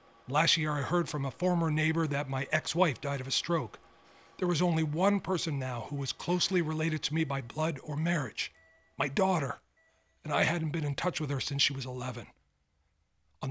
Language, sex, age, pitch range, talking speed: English, male, 40-59, 125-170 Hz, 205 wpm